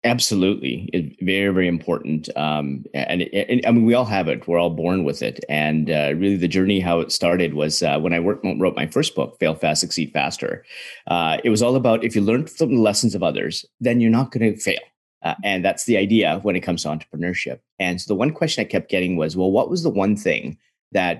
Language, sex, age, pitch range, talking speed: English, male, 30-49, 85-115 Hz, 245 wpm